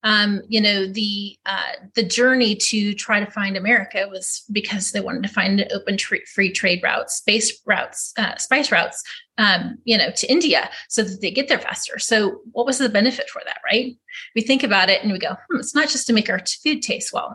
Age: 30-49